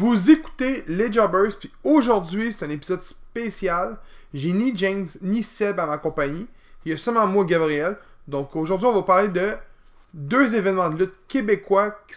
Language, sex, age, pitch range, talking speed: French, male, 20-39, 170-220 Hz, 180 wpm